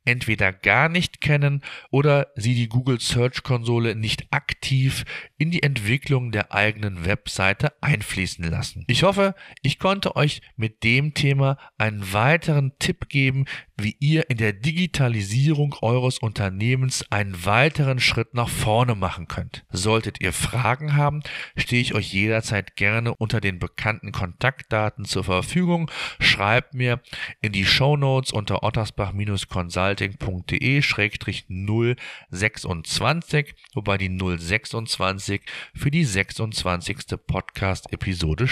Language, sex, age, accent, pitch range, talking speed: German, male, 40-59, German, 105-140 Hz, 115 wpm